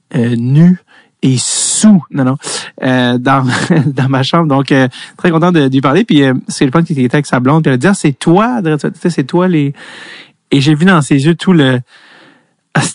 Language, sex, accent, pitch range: French, male, Canadian, 125-155 Hz